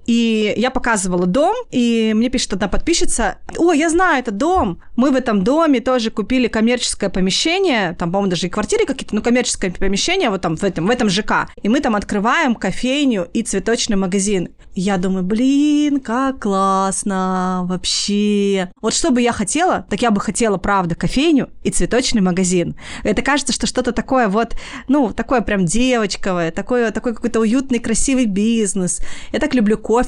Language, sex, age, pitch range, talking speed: Russian, female, 20-39, 200-265 Hz, 170 wpm